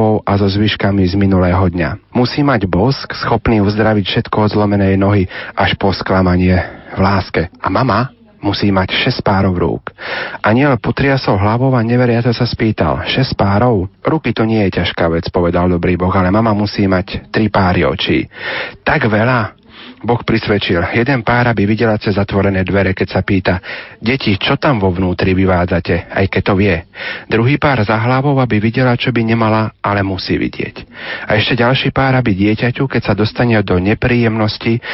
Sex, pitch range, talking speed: male, 95-115 Hz, 170 wpm